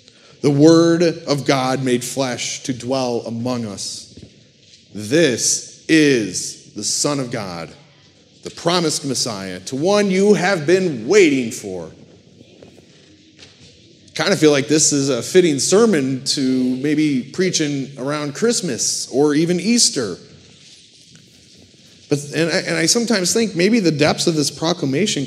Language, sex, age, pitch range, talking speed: English, male, 30-49, 135-170 Hz, 140 wpm